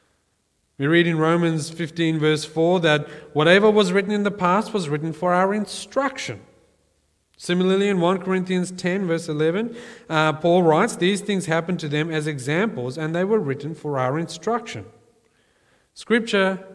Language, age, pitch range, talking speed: English, 30-49, 125-175 Hz, 160 wpm